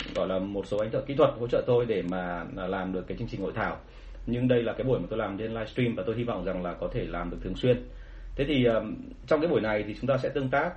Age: 30-49